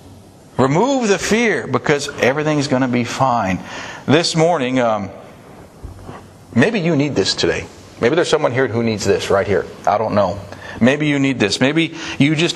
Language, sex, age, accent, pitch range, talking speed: English, male, 50-69, American, 110-145 Hz, 170 wpm